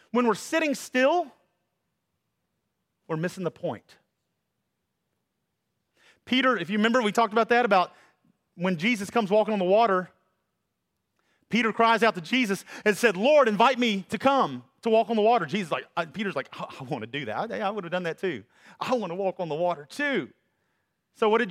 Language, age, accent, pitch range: English, 40-59, American, 180-260 Hz